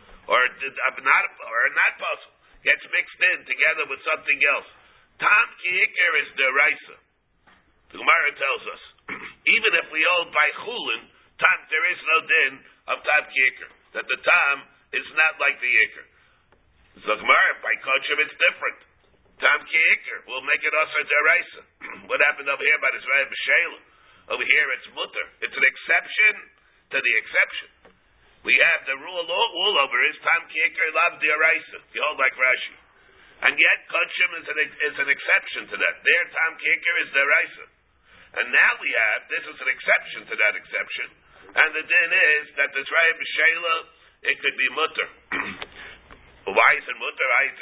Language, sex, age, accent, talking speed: English, male, 50-69, American, 165 wpm